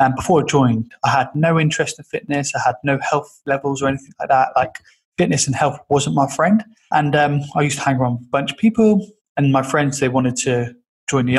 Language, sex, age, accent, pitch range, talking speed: English, male, 20-39, British, 130-160 Hz, 240 wpm